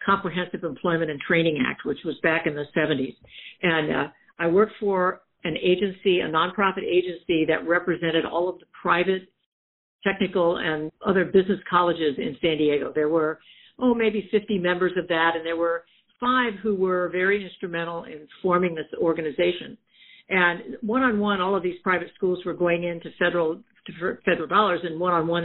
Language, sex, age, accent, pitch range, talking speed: English, female, 60-79, American, 165-195 Hz, 165 wpm